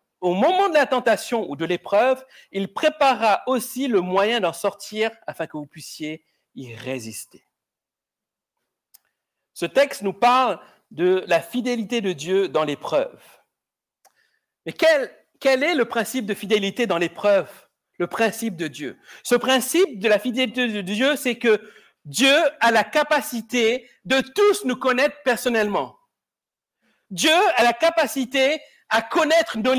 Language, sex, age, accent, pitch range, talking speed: French, male, 60-79, French, 190-265 Hz, 145 wpm